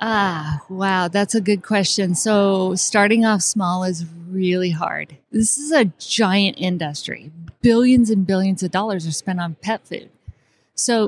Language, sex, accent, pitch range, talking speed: English, female, American, 180-215 Hz, 155 wpm